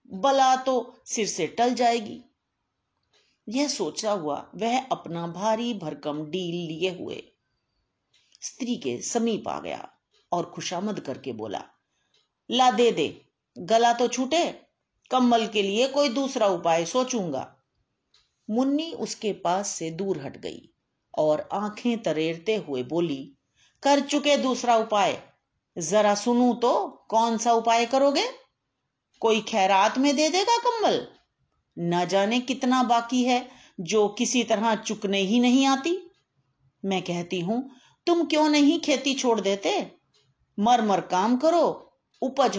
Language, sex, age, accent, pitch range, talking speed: Hindi, female, 50-69, native, 185-260 Hz, 130 wpm